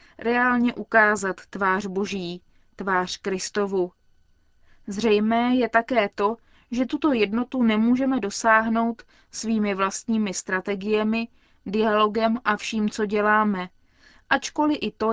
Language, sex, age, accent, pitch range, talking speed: Czech, female, 20-39, native, 200-235 Hz, 105 wpm